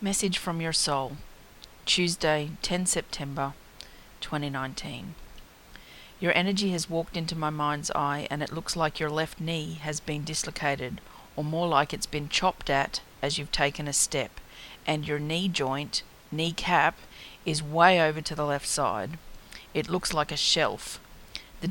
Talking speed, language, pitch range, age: 155 wpm, English, 145-165 Hz, 40-59